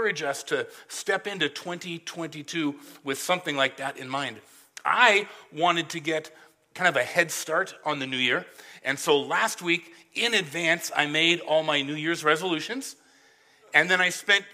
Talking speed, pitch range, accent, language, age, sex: 170 wpm, 150-190 Hz, American, English, 40-59, male